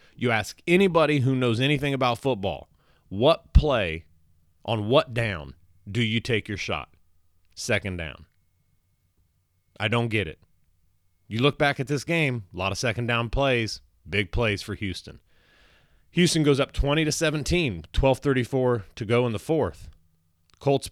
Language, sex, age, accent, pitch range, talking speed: English, male, 30-49, American, 85-125 Hz, 150 wpm